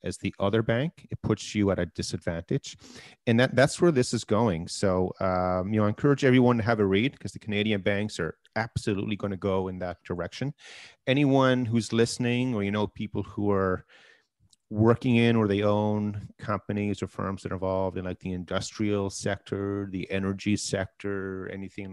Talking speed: 185 wpm